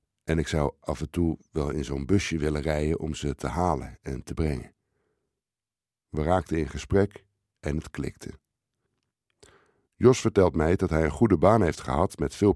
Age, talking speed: 60-79, 180 wpm